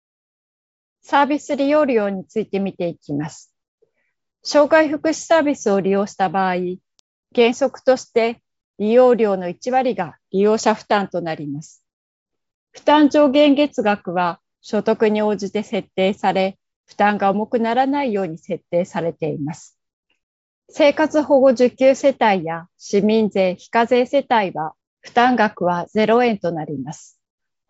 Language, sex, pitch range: Japanese, female, 180-245 Hz